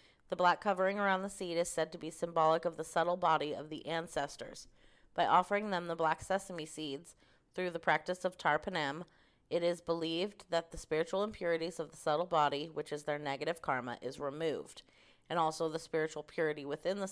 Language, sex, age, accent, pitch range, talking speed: English, female, 30-49, American, 150-175 Hz, 195 wpm